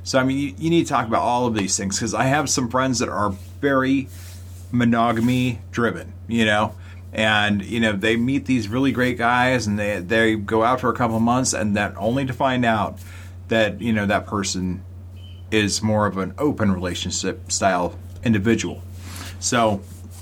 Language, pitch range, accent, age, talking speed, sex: English, 95-120 Hz, American, 40-59, 190 wpm, male